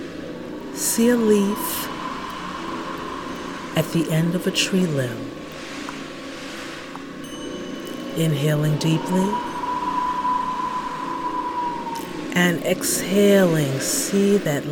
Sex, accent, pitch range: female, American, 170-285 Hz